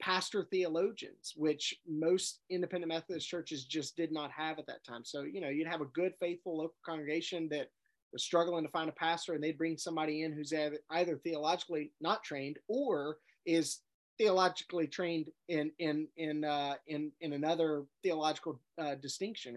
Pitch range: 145-170 Hz